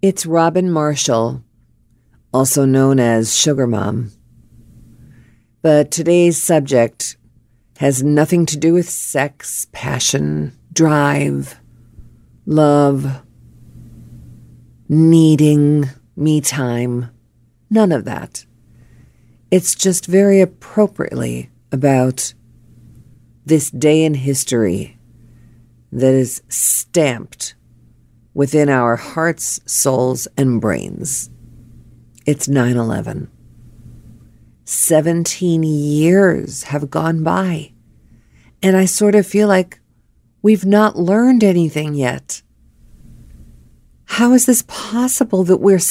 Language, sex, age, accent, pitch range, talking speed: English, female, 50-69, American, 120-175 Hz, 90 wpm